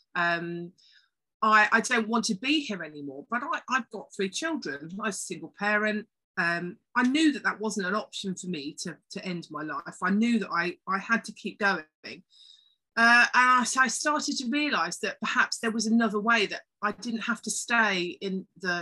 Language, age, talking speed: English, 40-59, 210 wpm